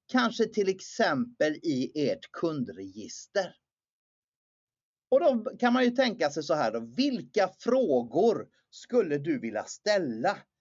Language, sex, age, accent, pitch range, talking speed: Swedish, male, 30-49, native, 145-230 Hz, 125 wpm